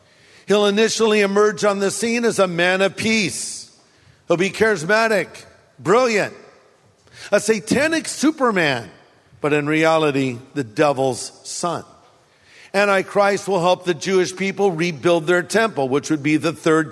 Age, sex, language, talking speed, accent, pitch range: 50-69, male, English, 135 wpm, American, 155-200 Hz